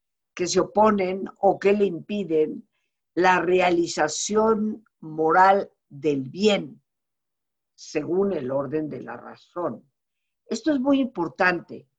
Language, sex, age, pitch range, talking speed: Spanish, female, 50-69, 150-210 Hz, 110 wpm